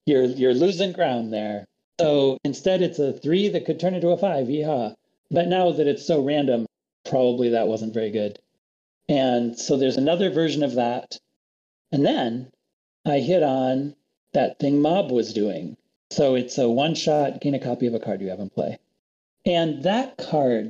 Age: 40-59